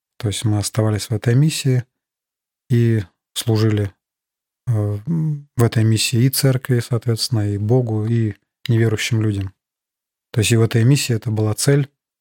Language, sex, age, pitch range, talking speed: Russian, male, 20-39, 110-125 Hz, 145 wpm